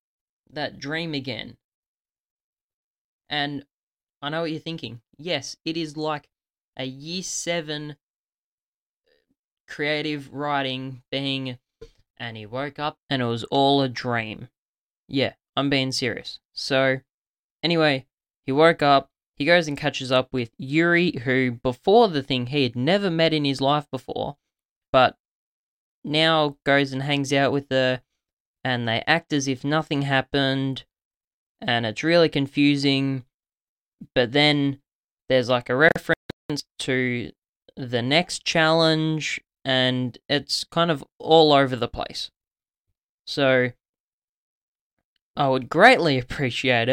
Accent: Australian